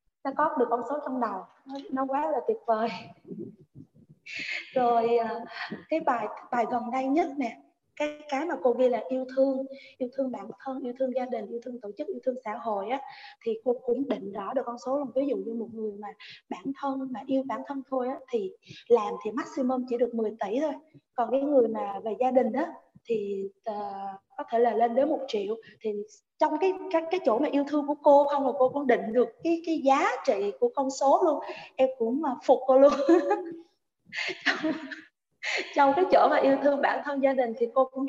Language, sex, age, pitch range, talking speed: Vietnamese, female, 20-39, 235-285 Hz, 220 wpm